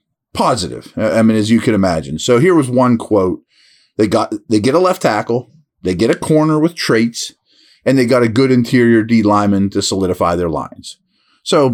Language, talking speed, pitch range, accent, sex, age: English, 195 wpm, 100-140 Hz, American, male, 30-49